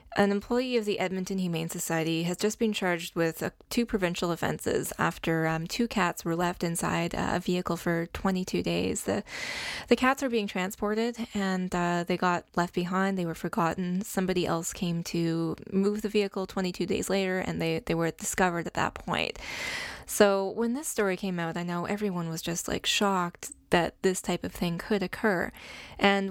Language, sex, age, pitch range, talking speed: English, female, 10-29, 170-205 Hz, 185 wpm